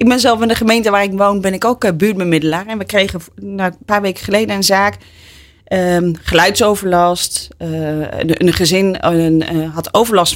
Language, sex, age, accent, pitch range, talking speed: Dutch, female, 30-49, Dutch, 165-215 Hz, 175 wpm